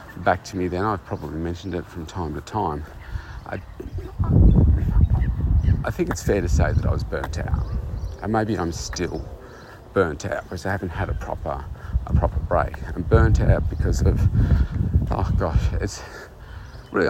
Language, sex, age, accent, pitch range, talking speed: English, male, 40-59, Australian, 80-100 Hz, 170 wpm